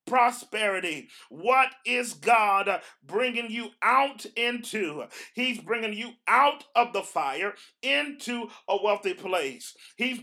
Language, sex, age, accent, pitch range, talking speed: English, male, 40-59, American, 205-245 Hz, 115 wpm